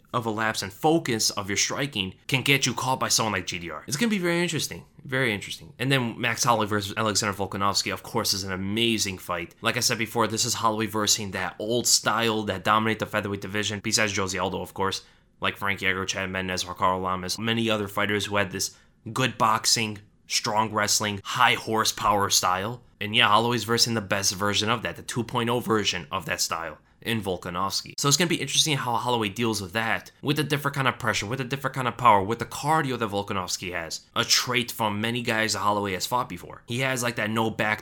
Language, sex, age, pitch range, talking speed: English, male, 20-39, 100-120 Hz, 220 wpm